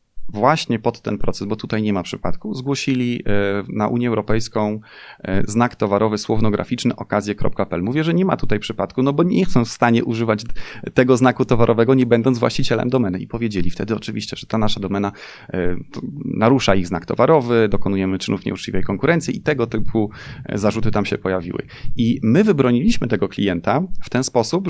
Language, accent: Polish, native